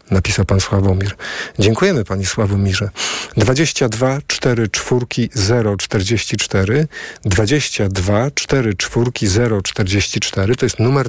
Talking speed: 105 wpm